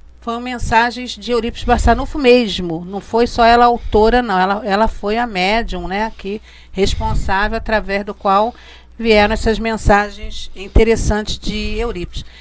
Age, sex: 50-69, female